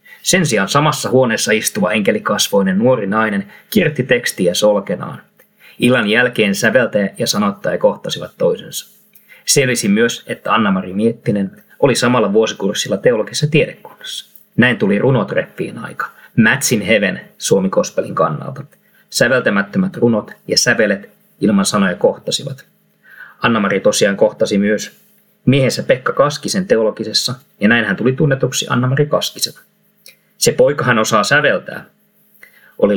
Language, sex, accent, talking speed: Finnish, male, native, 115 wpm